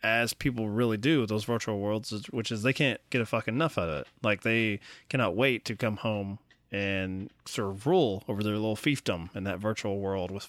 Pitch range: 100-125 Hz